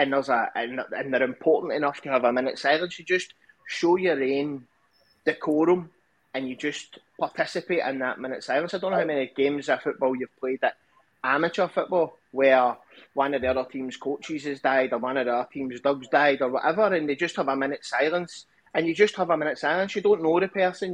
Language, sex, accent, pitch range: English, male, British, 130-170 Hz